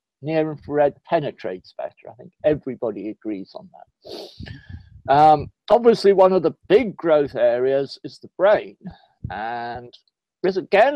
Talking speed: 125 wpm